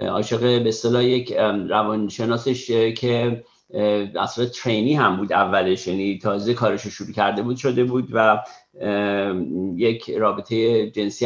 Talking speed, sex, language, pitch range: 125 wpm, male, Persian, 110-125 Hz